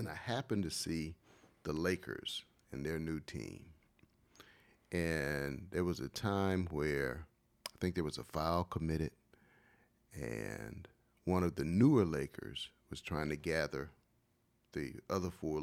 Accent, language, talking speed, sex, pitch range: American, English, 140 wpm, male, 80-115 Hz